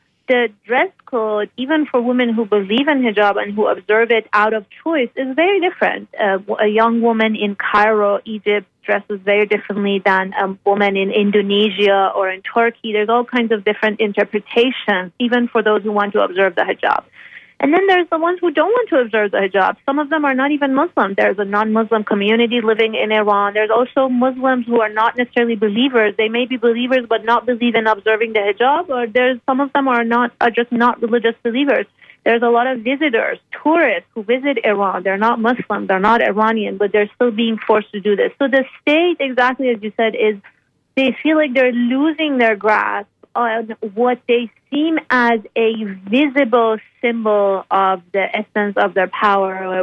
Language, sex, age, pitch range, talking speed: English, female, 30-49, 205-250 Hz, 195 wpm